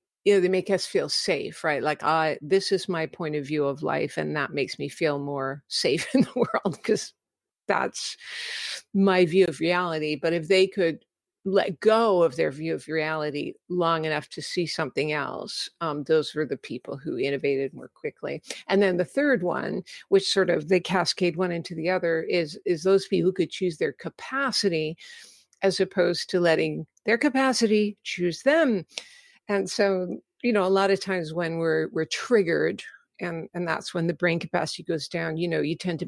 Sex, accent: female, American